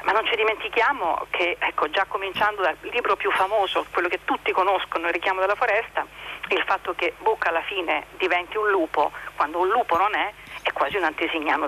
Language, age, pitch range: Italian, 50-69, 185-245 Hz